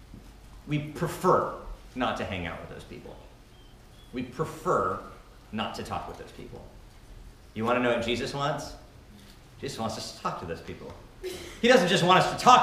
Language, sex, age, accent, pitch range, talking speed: English, male, 40-59, American, 155-220 Hz, 185 wpm